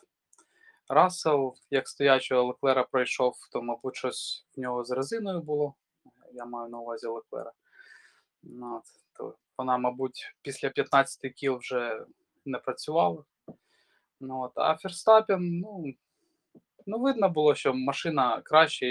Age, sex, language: 20-39, male, Ukrainian